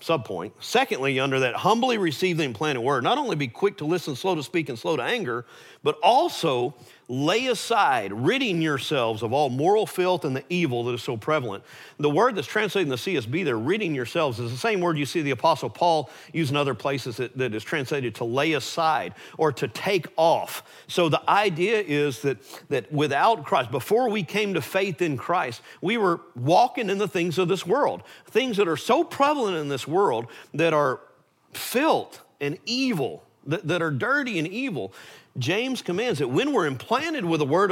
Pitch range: 145-210 Hz